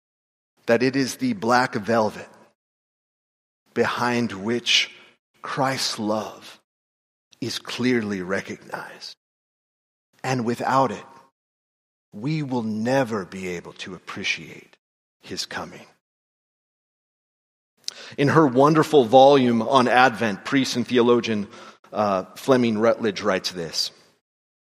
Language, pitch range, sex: English, 115-145 Hz, male